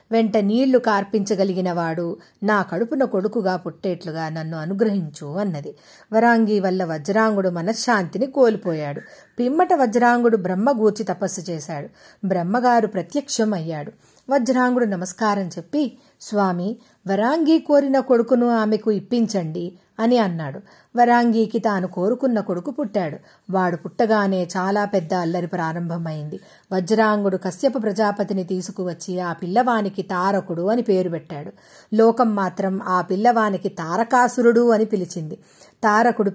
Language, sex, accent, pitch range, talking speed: Telugu, female, native, 180-230 Hz, 105 wpm